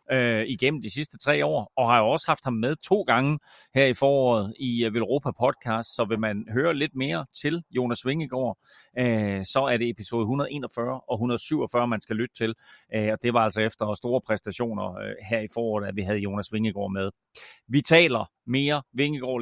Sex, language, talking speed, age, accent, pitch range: male, Danish, 200 wpm, 30-49, native, 110-135 Hz